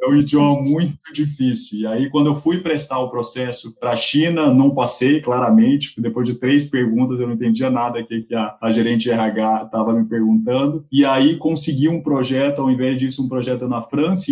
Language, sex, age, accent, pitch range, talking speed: Portuguese, male, 20-39, Brazilian, 120-150 Hz, 205 wpm